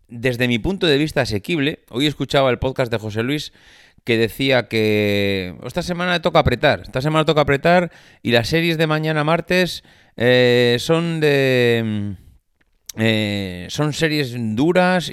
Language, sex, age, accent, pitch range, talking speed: Spanish, male, 30-49, Spanish, 105-145 Hz, 145 wpm